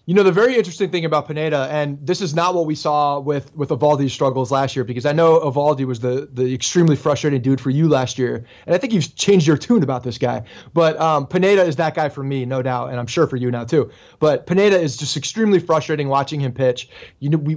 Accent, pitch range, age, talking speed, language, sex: American, 140-190 Hz, 20-39, 250 wpm, English, male